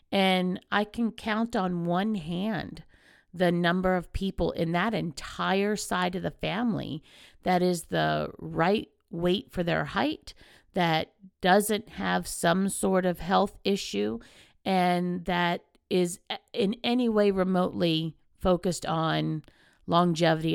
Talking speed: 130 wpm